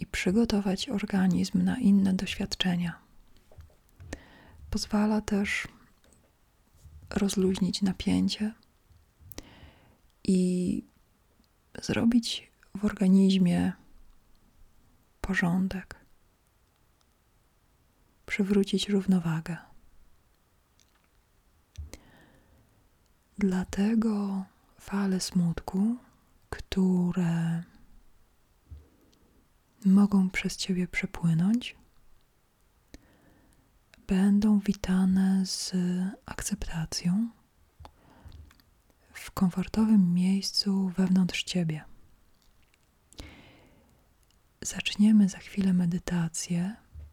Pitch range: 170-200 Hz